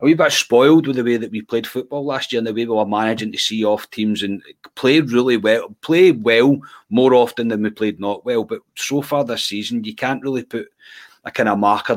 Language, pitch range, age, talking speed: English, 105-140 Hz, 30-49, 245 wpm